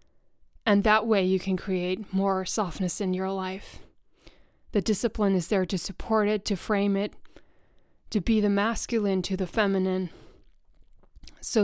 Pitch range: 185-205 Hz